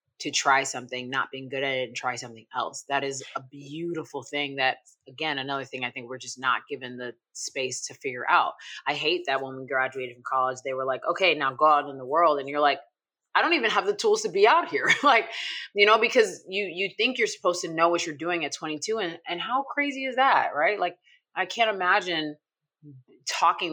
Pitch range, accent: 130-170 Hz, American